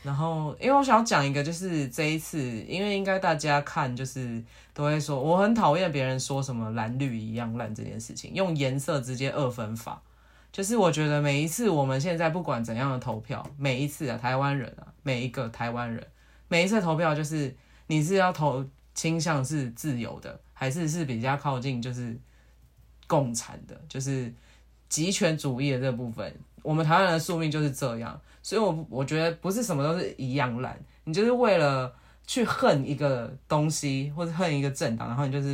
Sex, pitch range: male, 130-160 Hz